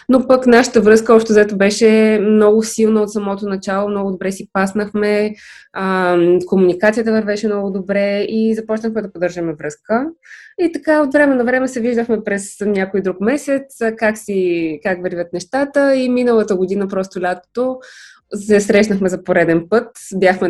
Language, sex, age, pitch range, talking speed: Bulgarian, female, 20-39, 185-225 Hz, 160 wpm